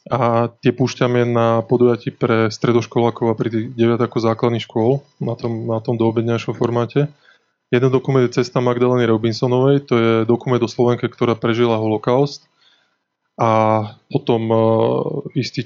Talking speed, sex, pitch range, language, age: 145 wpm, male, 115-125 Hz, Slovak, 20-39